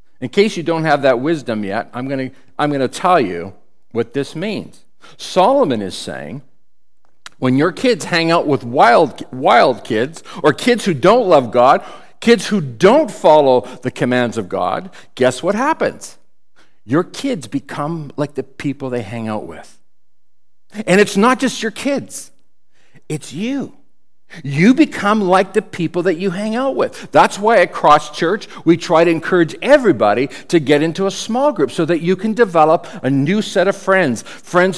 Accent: American